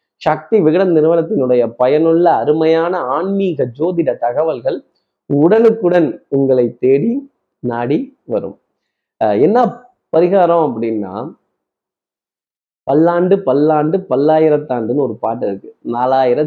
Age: 30-49